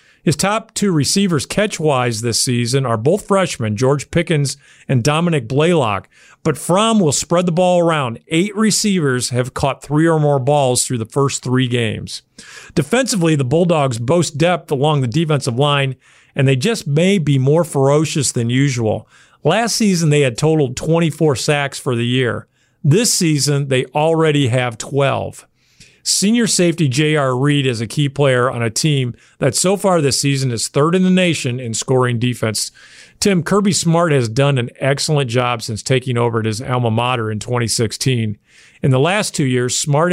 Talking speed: 175 wpm